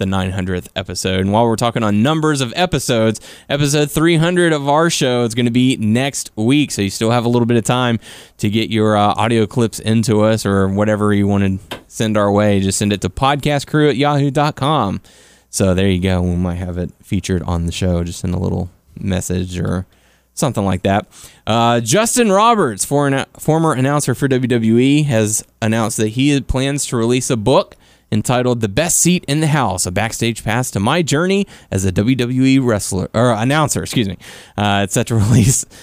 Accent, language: American, English